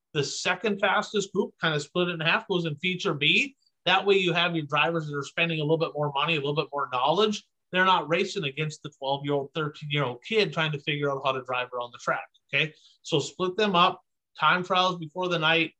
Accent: American